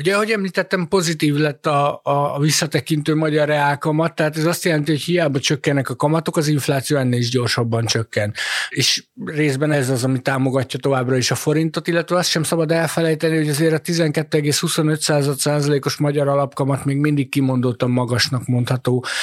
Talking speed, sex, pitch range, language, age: 160 wpm, male, 135-155 Hz, Hungarian, 60-79